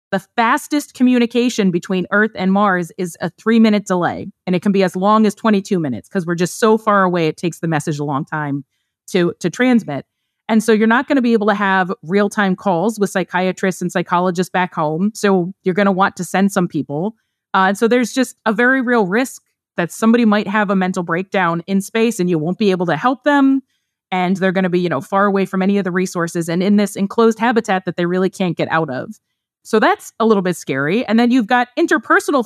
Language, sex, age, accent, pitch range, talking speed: English, female, 30-49, American, 180-225 Hz, 235 wpm